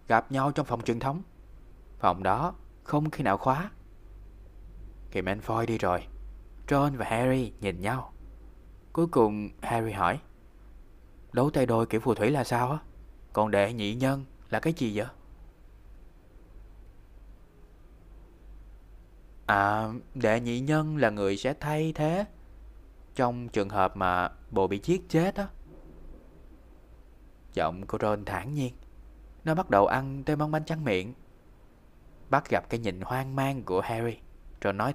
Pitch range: 90-140 Hz